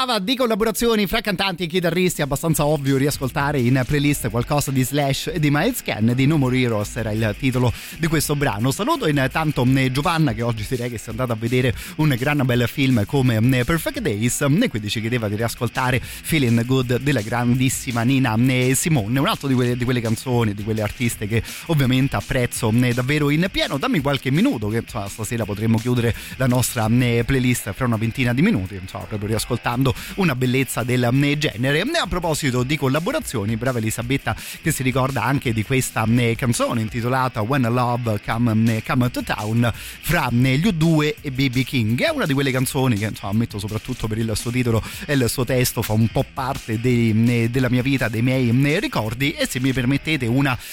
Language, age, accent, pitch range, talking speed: Italian, 30-49, native, 115-140 Hz, 185 wpm